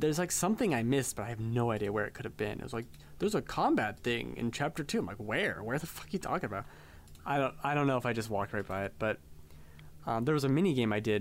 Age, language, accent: 20-39, English, American